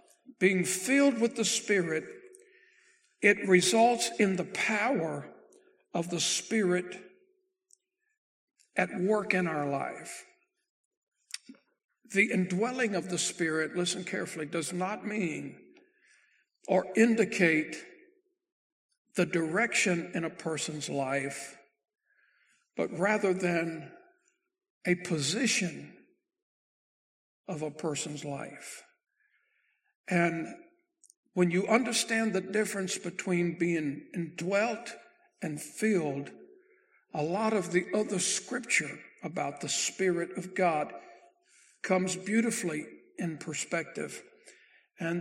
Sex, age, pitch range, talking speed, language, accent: male, 60-79, 175-245 Hz, 95 wpm, English, American